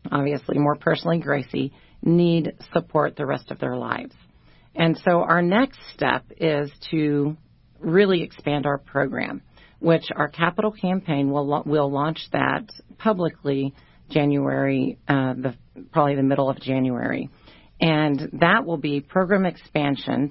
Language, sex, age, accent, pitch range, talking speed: English, female, 40-59, American, 135-155 Hz, 135 wpm